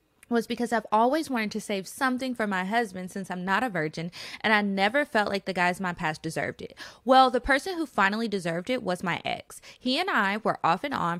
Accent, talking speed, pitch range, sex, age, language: American, 240 wpm, 185-240 Hz, female, 20-39, English